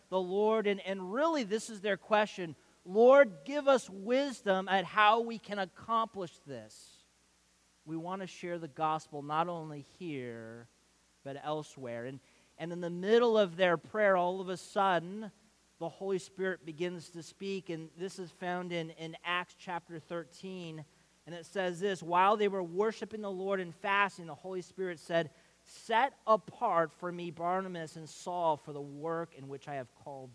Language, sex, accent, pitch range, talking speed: English, male, American, 145-190 Hz, 175 wpm